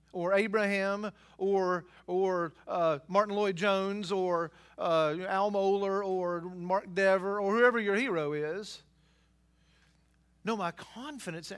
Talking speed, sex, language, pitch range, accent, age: 115 wpm, male, English, 175-220 Hz, American, 40-59